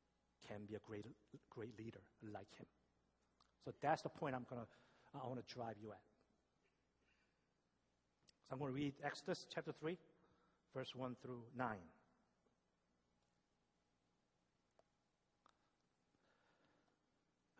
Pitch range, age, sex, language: 125-165 Hz, 50-69, male, Korean